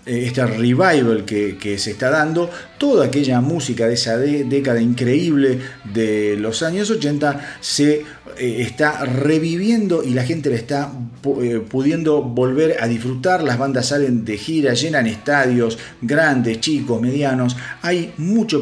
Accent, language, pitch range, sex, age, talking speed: Argentinian, Spanish, 115-150 Hz, male, 40-59, 140 wpm